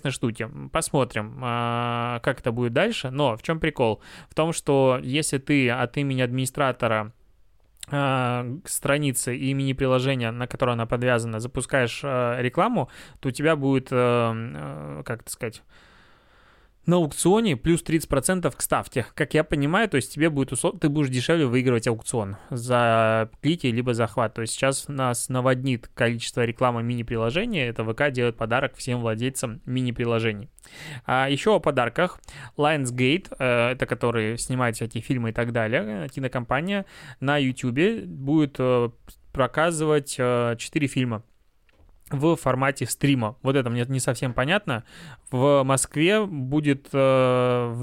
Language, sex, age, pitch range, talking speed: Russian, male, 20-39, 120-145 Hz, 135 wpm